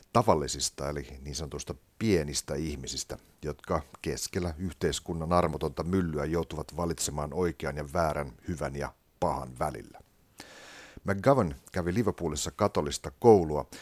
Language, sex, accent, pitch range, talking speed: Finnish, male, native, 75-95 Hz, 110 wpm